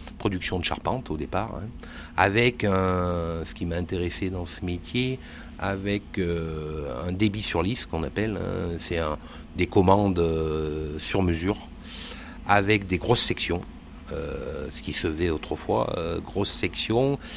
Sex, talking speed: male, 150 wpm